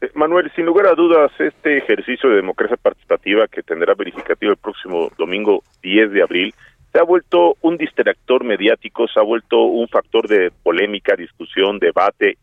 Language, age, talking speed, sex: Spanish, 40-59, 165 wpm, male